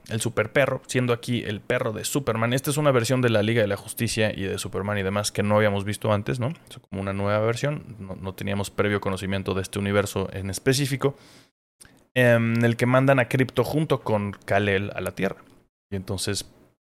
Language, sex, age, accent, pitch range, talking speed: Spanish, male, 20-39, Mexican, 100-130 Hz, 210 wpm